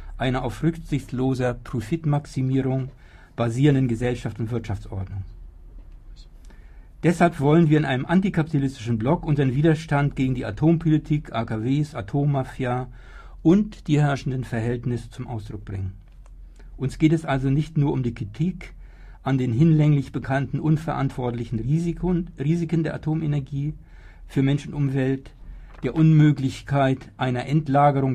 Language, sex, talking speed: German, male, 115 wpm